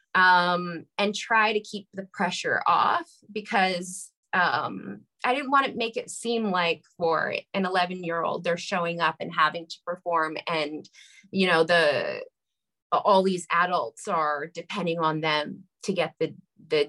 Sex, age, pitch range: female, 20-39, 170-210 Hz